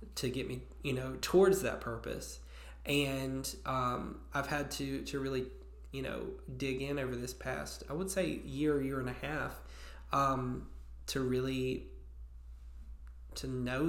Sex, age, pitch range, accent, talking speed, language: male, 20-39, 120-130 Hz, American, 150 wpm, English